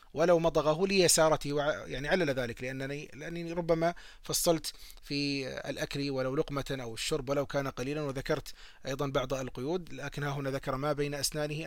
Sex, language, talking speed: male, Arabic, 155 wpm